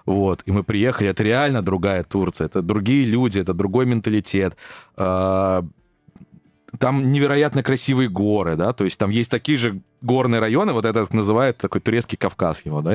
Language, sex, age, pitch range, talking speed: Russian, male, 20-39, 95-130 Hz, 160 wpm